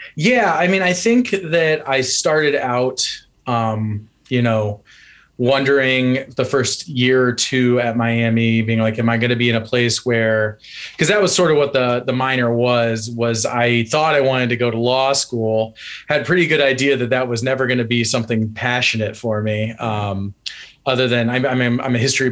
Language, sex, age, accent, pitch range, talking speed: English, male, 20-39, American, 115-135 Hz, 205 wpm